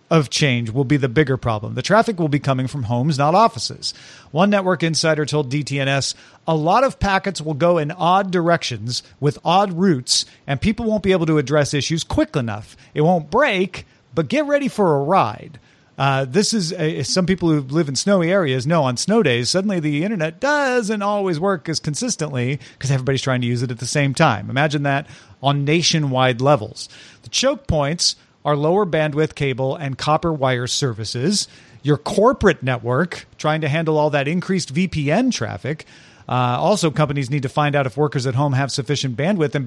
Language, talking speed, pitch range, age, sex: English, 190 wpm, 130-170 Hz, 40-59, male